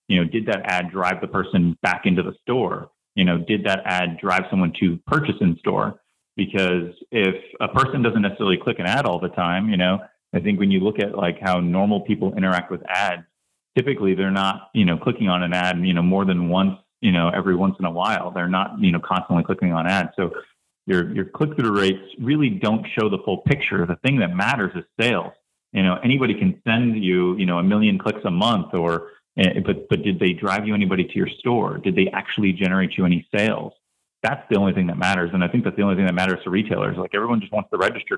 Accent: American